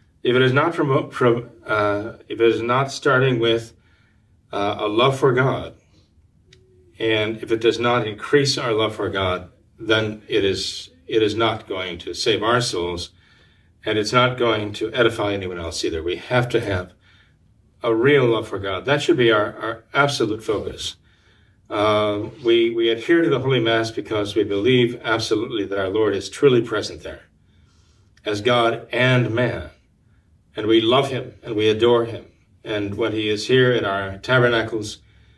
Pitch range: 100-120 Hz